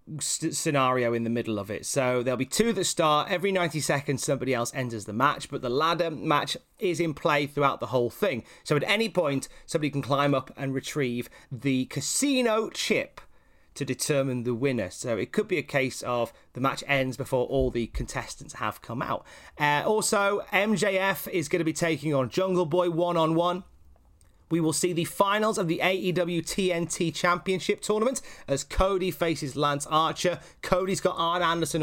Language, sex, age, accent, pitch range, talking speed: English, male, 30-49, British, 130-170 Hz, 185 wpm